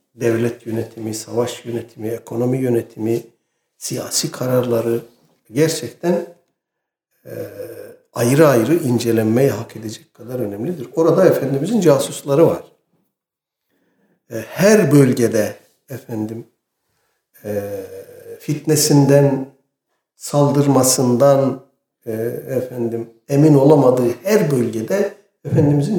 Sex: male